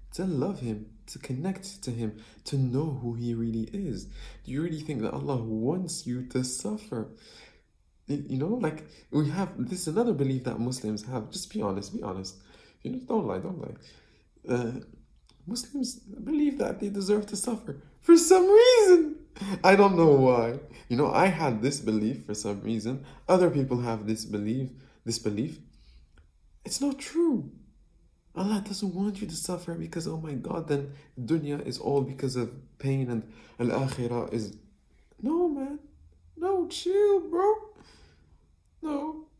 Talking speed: 160 wpm